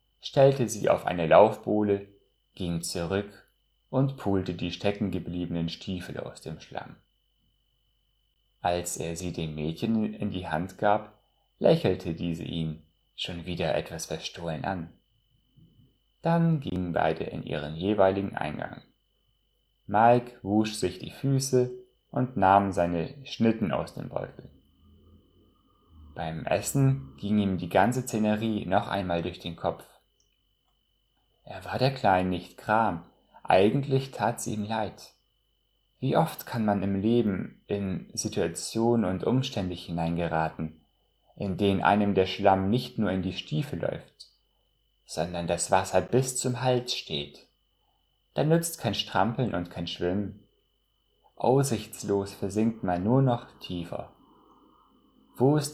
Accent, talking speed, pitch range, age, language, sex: German, 125 wpm, 90-120 Hz, 30-49, German, male